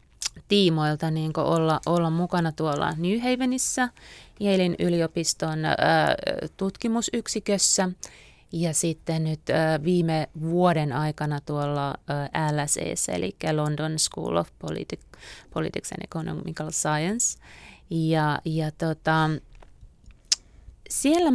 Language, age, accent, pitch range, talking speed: Finnish, 30-49, native, 155-190 Hz, 95 wpm